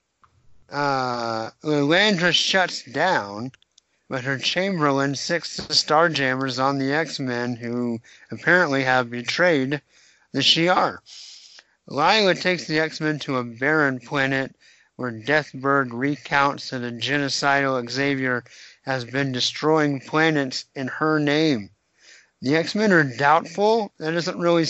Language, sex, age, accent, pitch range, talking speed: English, male, 50-69, American, 130-160 Hz, 115 wpm